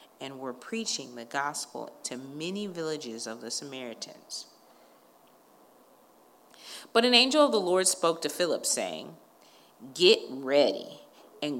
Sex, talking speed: female, 125 wpm